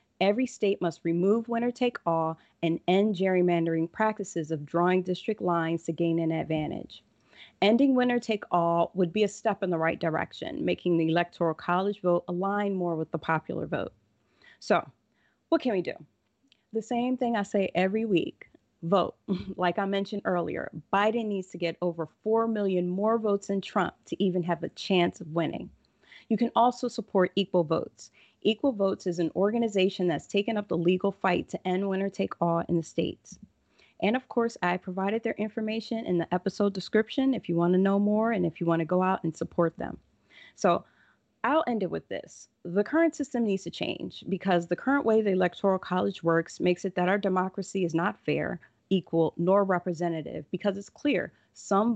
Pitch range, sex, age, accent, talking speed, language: 170-210 Hz, female, 30-49, American, 185 wpm, English